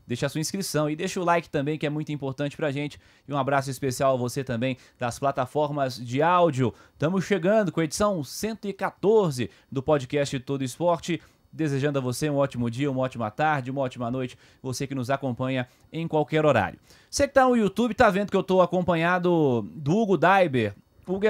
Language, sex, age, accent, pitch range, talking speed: Portuguese, male, 20-39, Brazilian, 130-165 Hz, 200 wpm